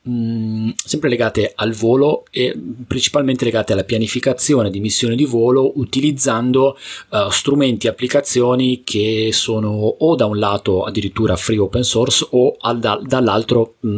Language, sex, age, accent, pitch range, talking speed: Italian, male, 30-49, native, 95-125 Hz, 125 wpm